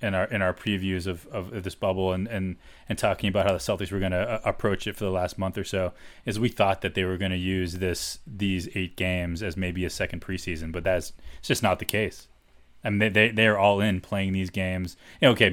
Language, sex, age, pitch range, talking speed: English, male, 20-39, 90-110 Hz, 265 wpm